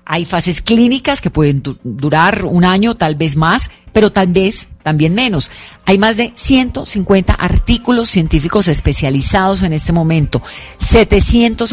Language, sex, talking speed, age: Spanish, female, 140 wpm, 40-59